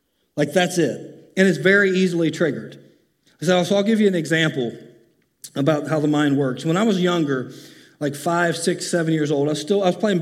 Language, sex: English, male